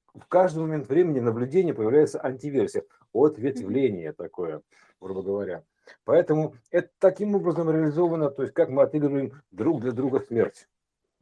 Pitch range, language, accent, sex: 125-180 Hz, Russian, native, male